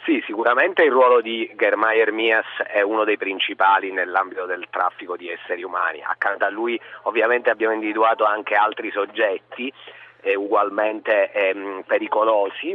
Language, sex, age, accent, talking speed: Italian, male, 40-59, native, 140 wpm